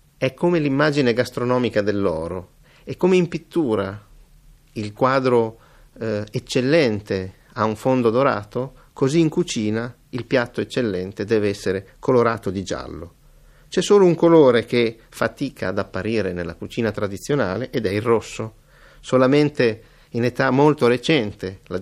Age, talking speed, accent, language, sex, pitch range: 50-69, 135 wpm, native, Italian, male, 100-130 Hz